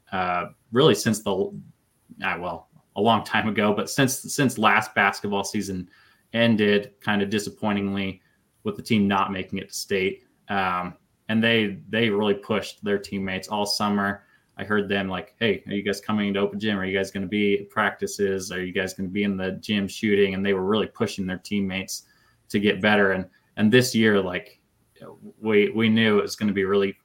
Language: English